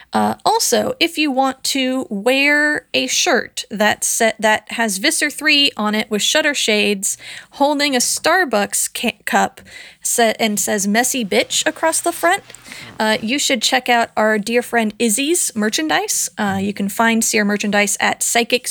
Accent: American